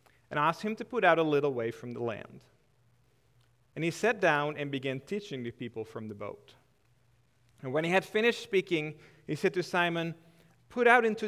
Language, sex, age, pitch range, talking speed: English, male, 40-59, 125-180 Hz, 195 wpm